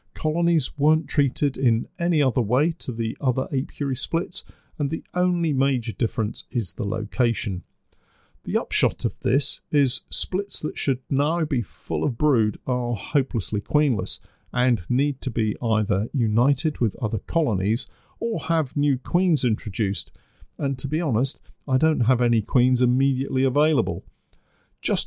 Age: 50-69